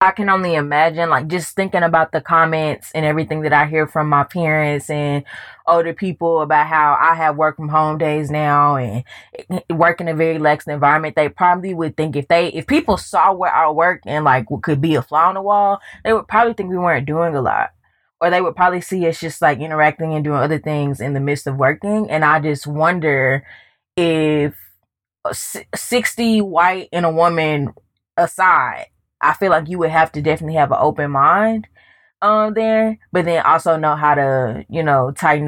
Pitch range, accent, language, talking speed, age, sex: 140-165 Hz, American, English, 205 wpm, 20-39, female